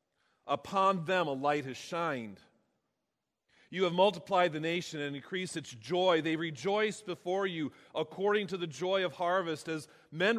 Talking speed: 155 wpm